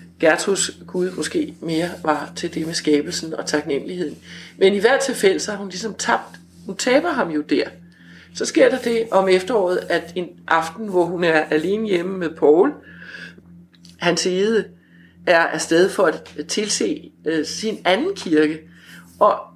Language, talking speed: English, 160 wpm